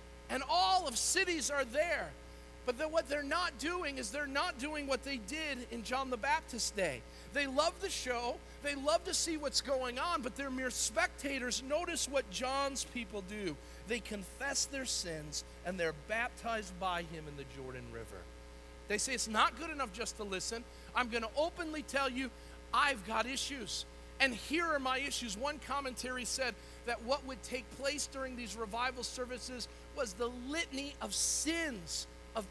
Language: English